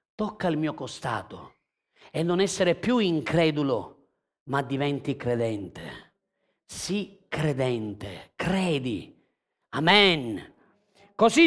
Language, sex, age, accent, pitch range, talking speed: Italian, male, 40-59, native, 160-235 Hz, 90 wpm